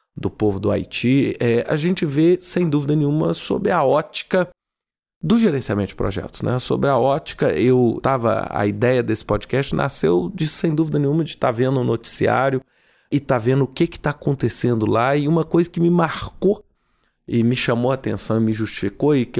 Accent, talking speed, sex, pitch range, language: Brazilian, 205 wpm, male, 125-180 Hz, Portuguese